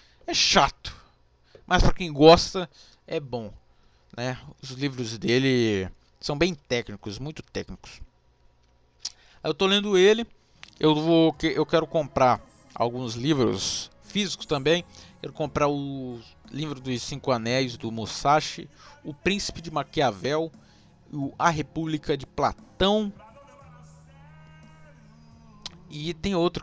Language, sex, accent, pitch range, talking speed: Portuguese, male, Brazilian, 115-170 Hz, 115 wpm